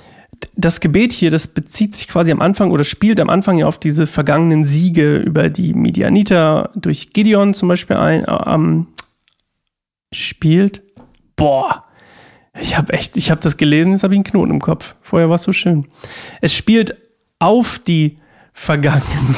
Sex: male